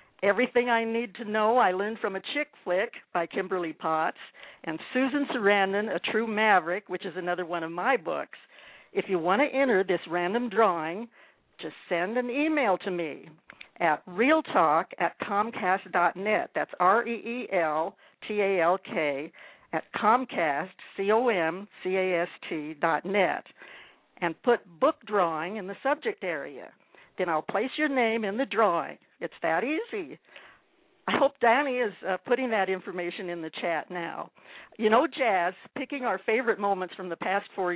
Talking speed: 145 wpm